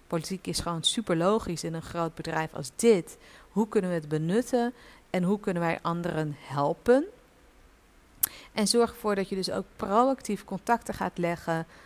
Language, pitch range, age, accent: Dutch, 170-215 Hz, 50-69, Dutch